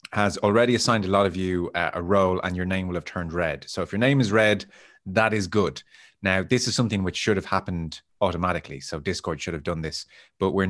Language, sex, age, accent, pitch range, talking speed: English, male, 30-49, Irish, 80-100 Hz, 240 wpm